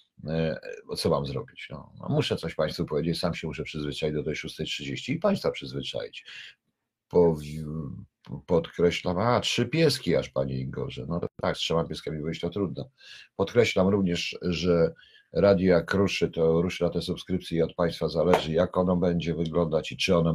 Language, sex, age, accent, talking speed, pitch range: Polish, male, 50-69, native, 160 wpm, 80-95 Hz